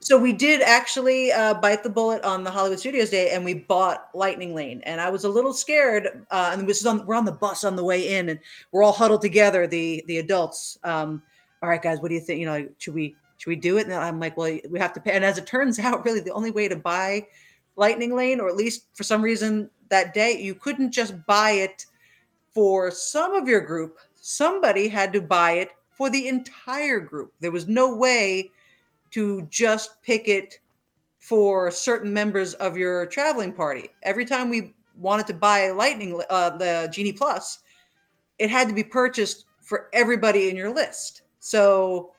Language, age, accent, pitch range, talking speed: English, 40-59, American, 180-225 Hz, 210 wpm